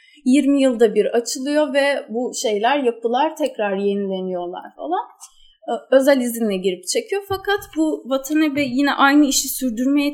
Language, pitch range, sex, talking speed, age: Turkish, 220-300 Hz, female, 130 wpm, 30-49